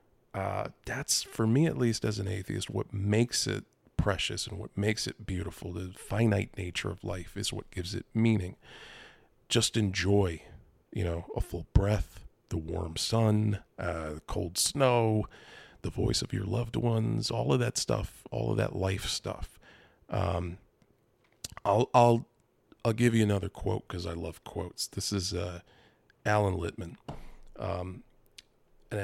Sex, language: male, English